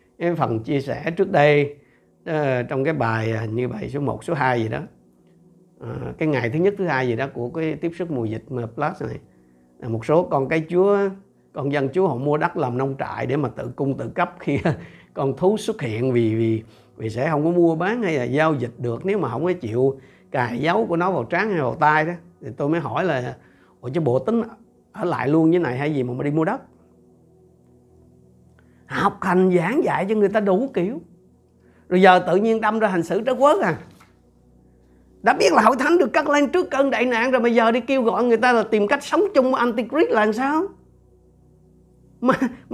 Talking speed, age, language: 220 wpm, 60-79, Vietnamese